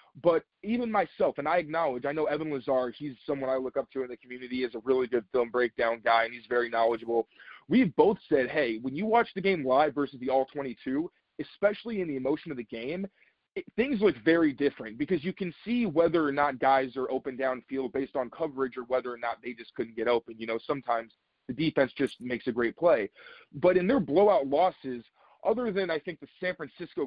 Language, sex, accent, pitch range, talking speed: English, male, American, 125-165 Hz, 220 wpm